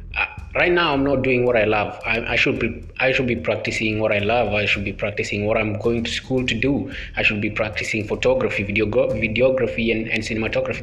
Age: 20-39